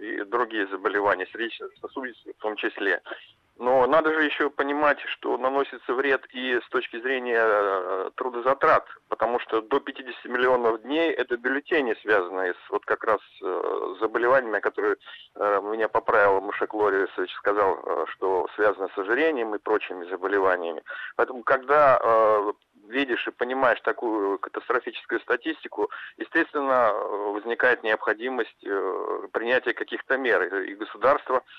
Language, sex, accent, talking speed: Russian, male, native, 125 wpm